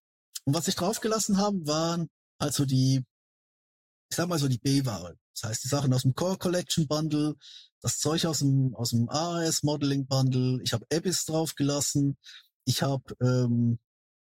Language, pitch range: German, 130-165 Hz